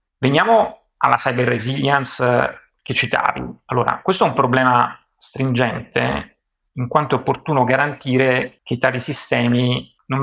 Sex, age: male, 30-49